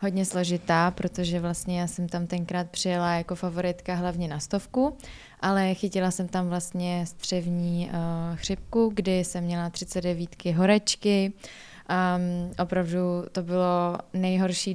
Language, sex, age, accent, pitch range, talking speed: Czech, female, 20-39, native, 175-185 Hz, 135 wpm